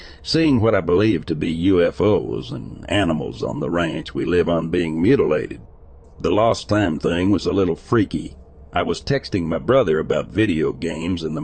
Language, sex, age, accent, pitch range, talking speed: English, male, 60-79, American, 85-115 Hz, 185 wpm